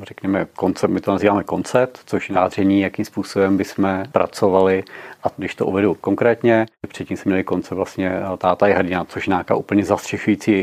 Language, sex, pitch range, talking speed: Czech, male, 90-105 Hz, 180 wpm